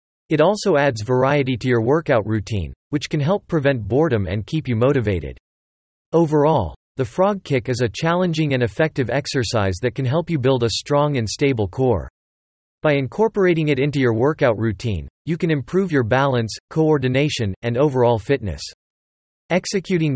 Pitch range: 110-155 Hz